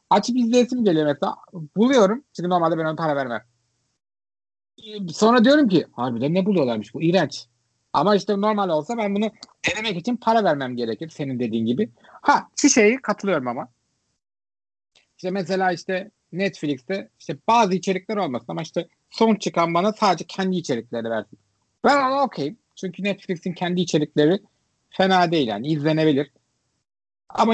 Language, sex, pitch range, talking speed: Turkish, male, 130-195 Hz, 145 wpm